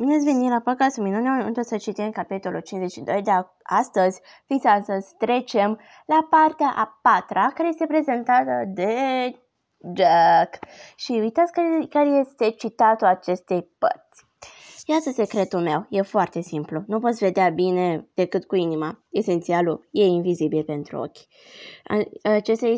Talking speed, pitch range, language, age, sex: 135 wpm, 180-230 Hz, Romanian, 20-39, female